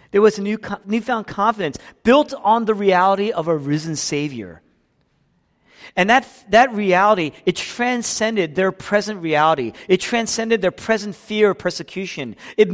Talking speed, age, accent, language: 145 wpm, 40-59, American, English